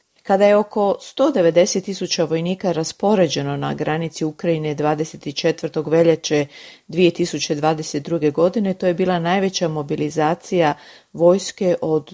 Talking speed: 100 wpm